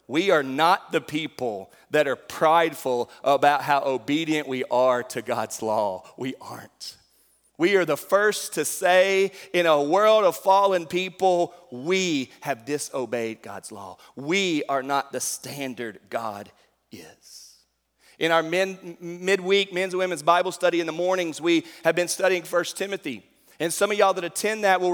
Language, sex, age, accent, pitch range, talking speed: English, male, 40-59, American, 135-190 Hz, 160 wpm